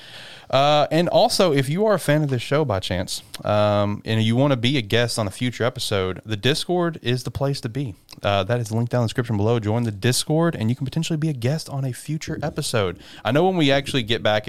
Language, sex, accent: English, male, American